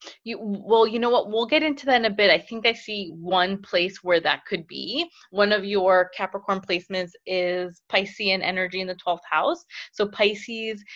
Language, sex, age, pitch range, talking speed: English, female, 20-39, 185-235 Hz, 195 wpm